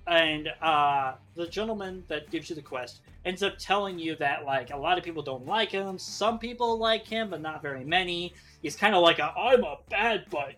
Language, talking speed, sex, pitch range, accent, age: English, 220 wpm, male, 150-235 Hz, American, 30-49